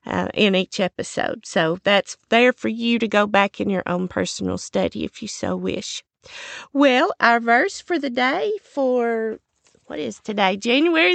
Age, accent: 40-59, American